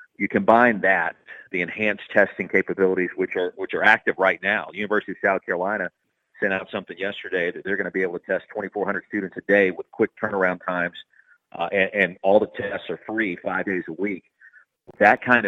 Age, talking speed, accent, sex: 40-59, 205 wpm, American, male